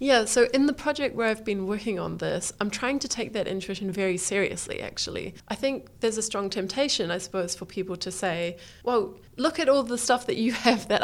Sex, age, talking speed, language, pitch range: female, 20-39, 230 wpm, English, 185-230 Hz